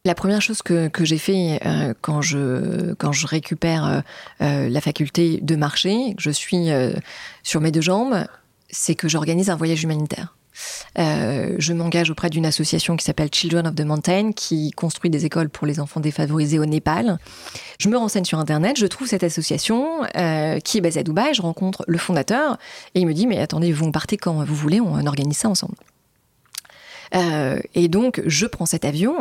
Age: 30-49